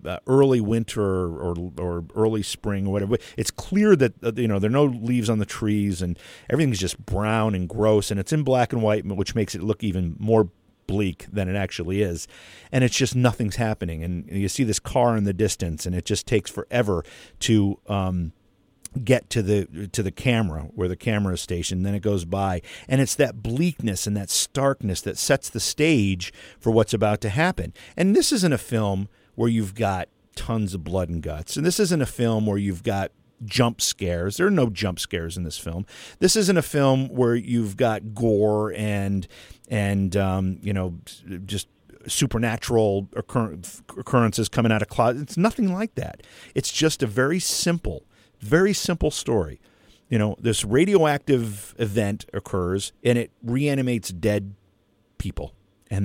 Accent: American